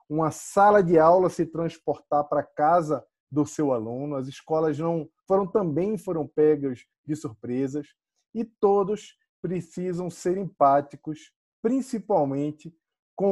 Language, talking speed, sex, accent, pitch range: Portuguese, 120 wpm, male, Brazilian, 145-185 Hz